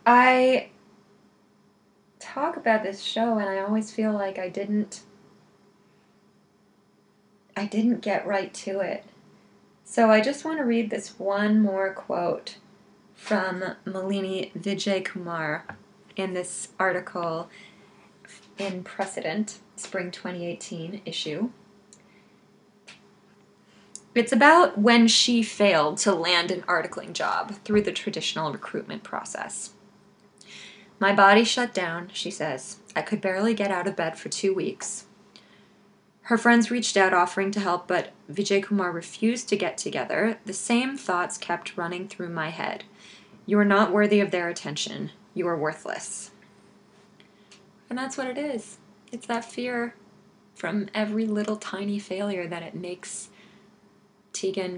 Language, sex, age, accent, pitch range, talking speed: English, female, 20-39, American, 190-210 Hz, 130 wpm